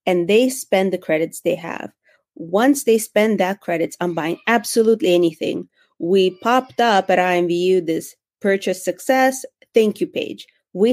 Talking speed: 155 wpm